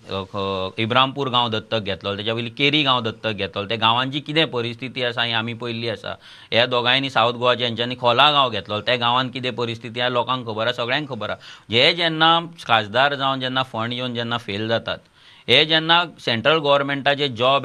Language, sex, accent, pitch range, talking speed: English, male, Indian, 120-160 Hz, 140 wpm